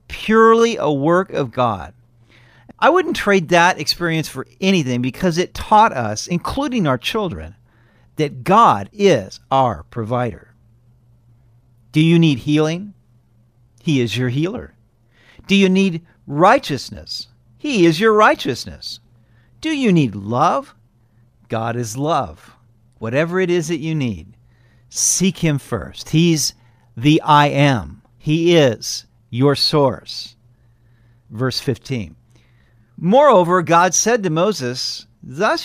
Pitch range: 120-175 Hz